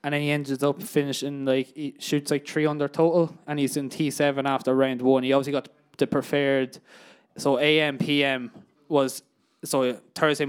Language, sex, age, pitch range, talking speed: English, male, 20-39, 130-155 Hz, 175 wpm